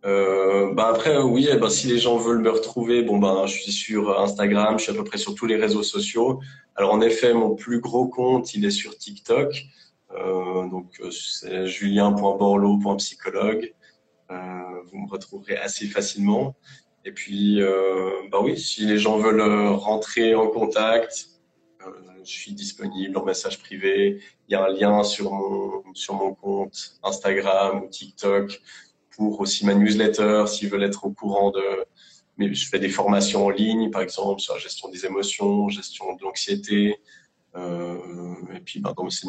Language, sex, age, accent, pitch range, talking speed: French, male, 20-39, French, 95-120 Hz, 175 wpm